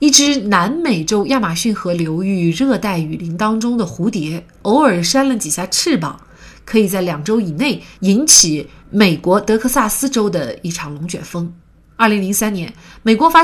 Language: Chinese